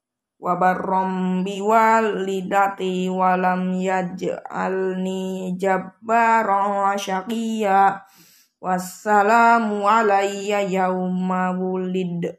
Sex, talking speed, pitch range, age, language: female, 55 wpm, 185-210 Hz, 20-39, Indonesian